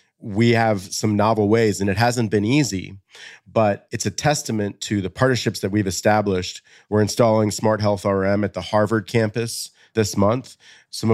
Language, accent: English, American